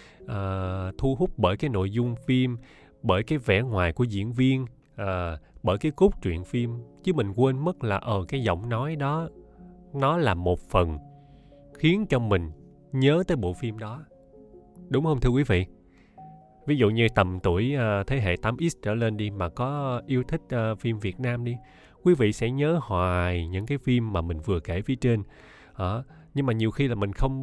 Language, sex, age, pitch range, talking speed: Vietnamese, male, 20-39, 95-135 Hz, 190 wpm